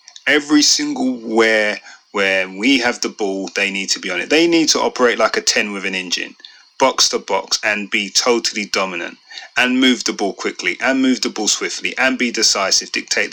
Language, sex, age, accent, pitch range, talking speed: English, male, 30-49, British, 100-145 Hz, 205 wpm